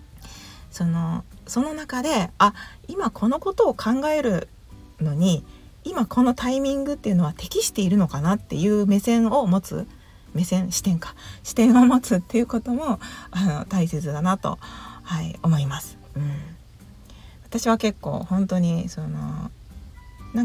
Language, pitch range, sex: Japanese, 165-235 Hz, female